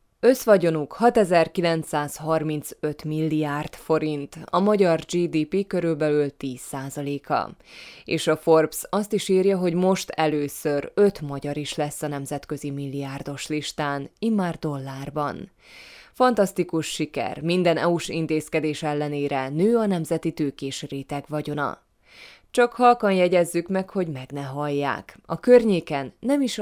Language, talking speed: Hungarian, 120 wpm